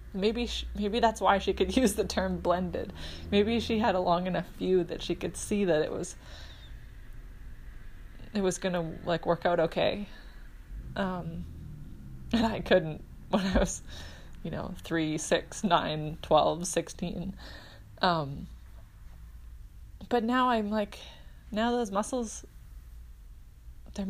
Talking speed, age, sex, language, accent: 140 wpm, 20-39, female, English, American